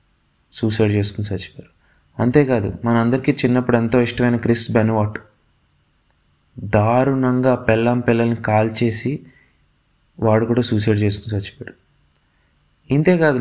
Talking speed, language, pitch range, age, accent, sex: 95 wpm, Telugu, 105-130 Hz, 20-39, native, male